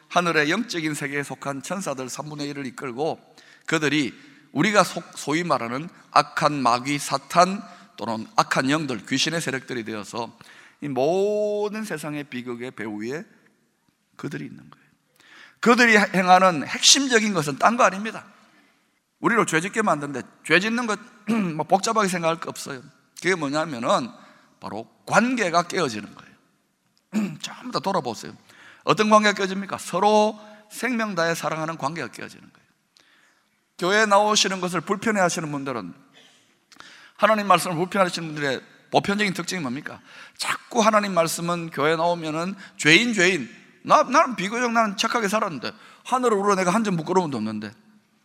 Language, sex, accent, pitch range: Korean, male, native, 140-215 Hz